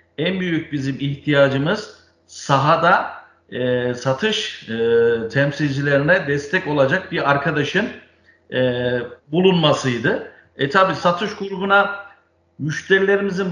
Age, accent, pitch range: 50-69, native, 140-175 Hz